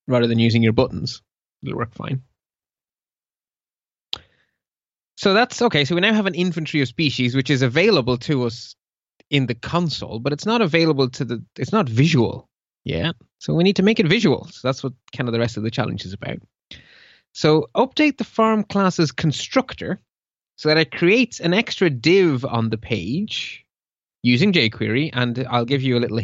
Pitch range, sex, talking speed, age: 120-165 Hz, male, 185 wpm, 20-39